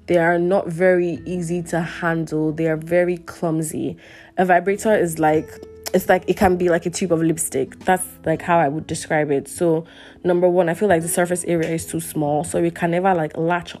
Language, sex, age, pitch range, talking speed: English, female, 20-39, 155-180 Hz, 215 wpm